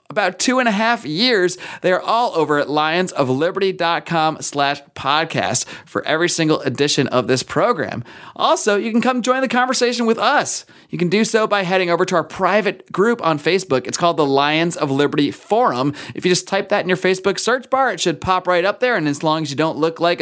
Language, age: English, 30-49